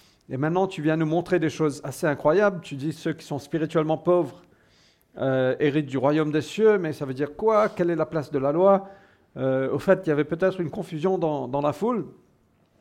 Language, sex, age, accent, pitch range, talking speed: French, male, 50-69, French, 145-185 Hz, 225 wpm